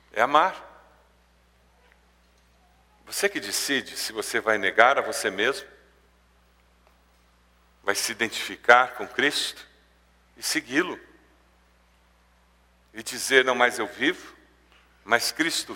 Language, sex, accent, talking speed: Portuguese, male, Brazilian, 105 wpm